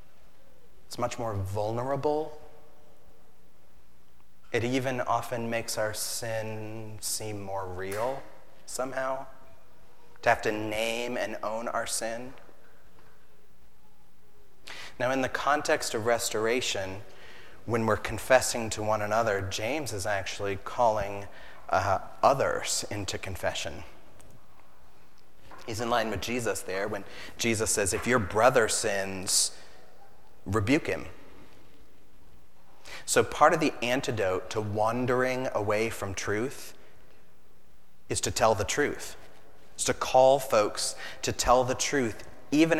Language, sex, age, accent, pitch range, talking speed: English, male, 30-49, American, 95-125 Hz, 115 wpm